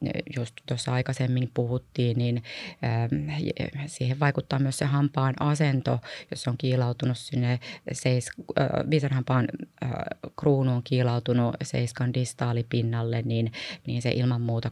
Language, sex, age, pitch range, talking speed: Finnish, female, 20-39, 120-140 Hz, 110 wpm